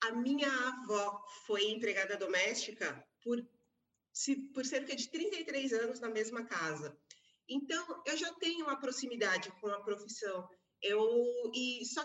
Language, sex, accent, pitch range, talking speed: Portuguese, female, Brazilian, 210-265 Hz, 140 wpm